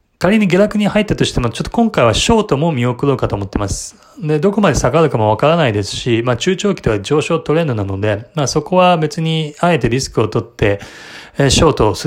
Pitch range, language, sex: 115-150 Hz, Japanese, male